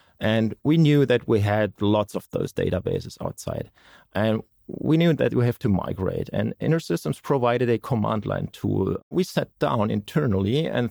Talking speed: 170 wpm